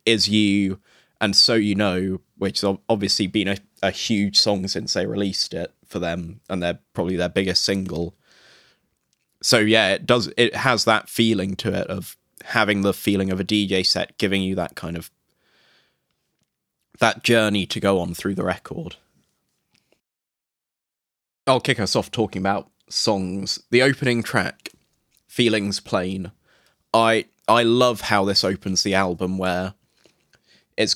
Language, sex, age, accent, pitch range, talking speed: English, male, 20-39, British, 95-115 Hz, 155 wpm